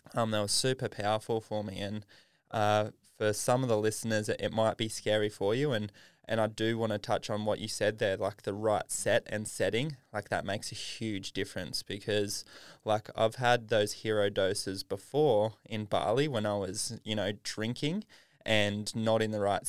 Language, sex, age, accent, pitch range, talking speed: English, male, 20-39, Australian, 105-115 Hz, 200 wpm